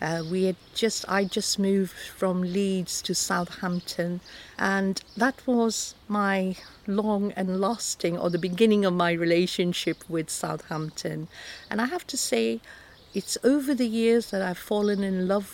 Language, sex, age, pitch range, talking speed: English, female, 50-69, 175-210 Hz, 155 wpm